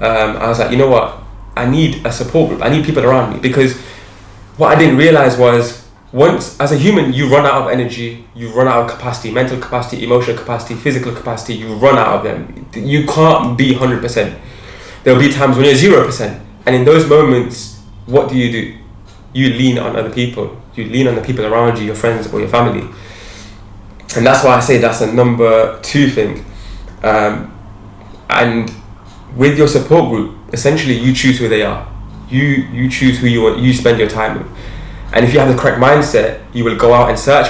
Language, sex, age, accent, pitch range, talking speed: English, male, 20-39, British, 110-130 Hz, 220 wpm